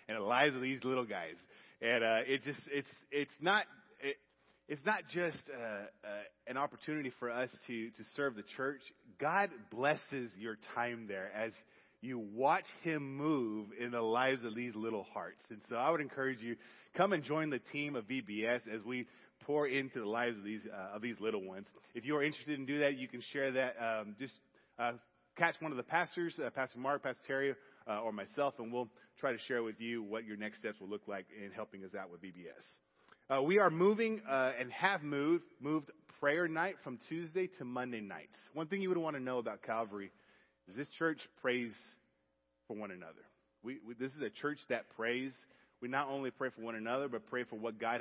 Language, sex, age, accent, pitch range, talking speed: English, male, 30-49, American, 115-145 Hz, 215 wpm